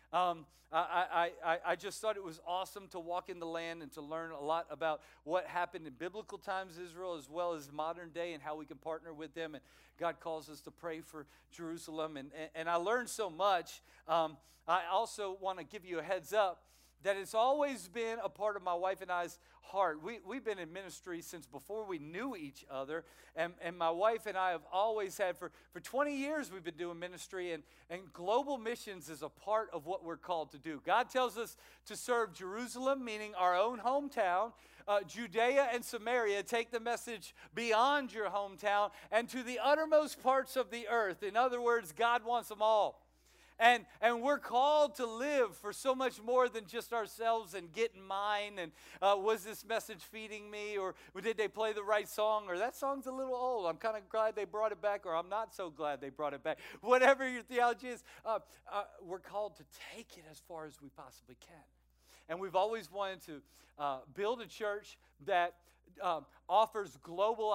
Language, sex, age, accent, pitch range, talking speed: English, male, 50-69, American, 165-225 Hz, 210 wpm